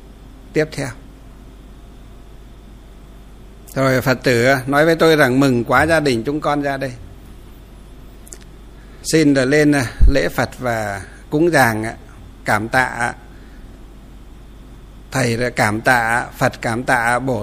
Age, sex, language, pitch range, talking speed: 60-79, male, Vietnamese, 115-145 Hz, 115 wpm